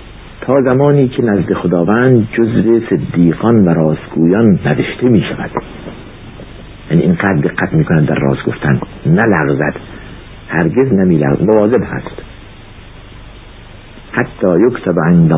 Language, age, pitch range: Persian, 60-79, 90-130 Hz